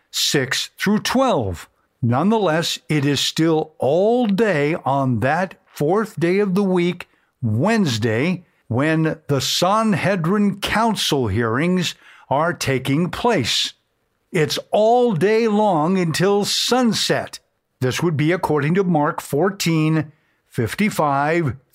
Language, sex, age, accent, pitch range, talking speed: English, male, 60-79, American, 135-195 Hz, 105 wpm